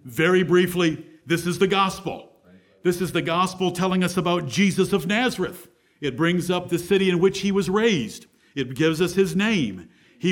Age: 50-69